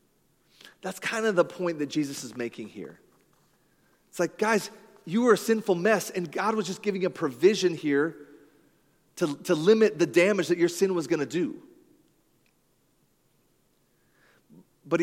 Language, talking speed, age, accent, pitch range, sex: English, 150 wpm, 30-49, American, 145-190 Hz, male